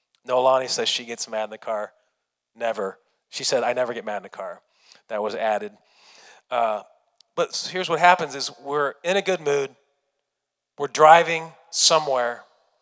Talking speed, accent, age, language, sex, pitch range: 170 wpm, American, 30-49, English, male, 150-175 Hz